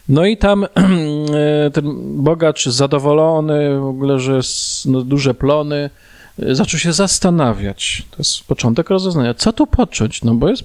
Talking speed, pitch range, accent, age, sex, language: 145 wpm, 125-160 Hz, native, 40-59, male, Polish